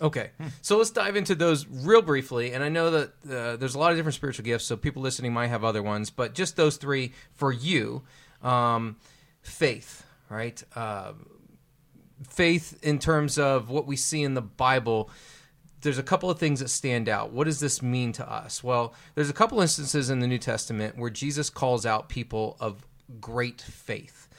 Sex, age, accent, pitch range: male, 30-49, American, 120-150 Hz